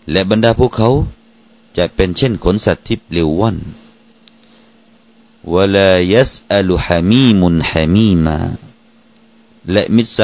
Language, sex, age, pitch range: Thai, male, 50-69, 85-125 Hz